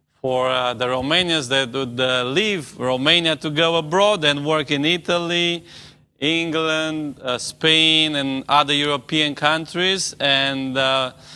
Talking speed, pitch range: 125 wpm, 130-155 Hz